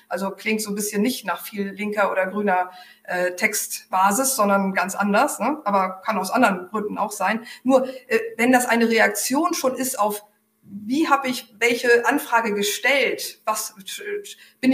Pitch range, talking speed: 200-235 Hz, 165 wpm